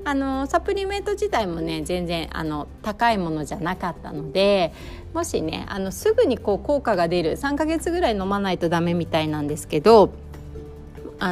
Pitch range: 160-235 Hz